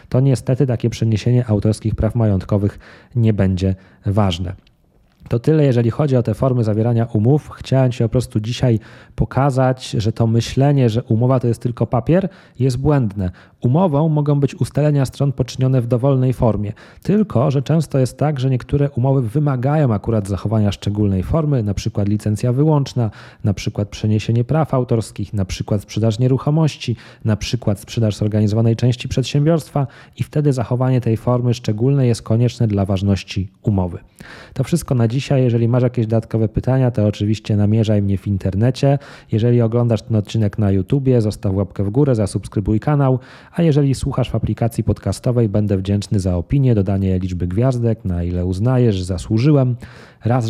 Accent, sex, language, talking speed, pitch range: native, male, Polish, 155 wpm, 105-130 Hz